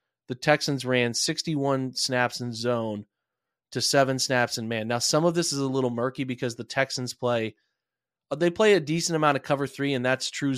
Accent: American